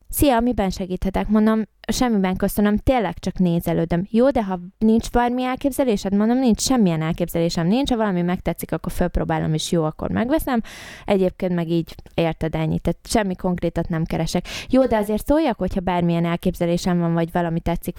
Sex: female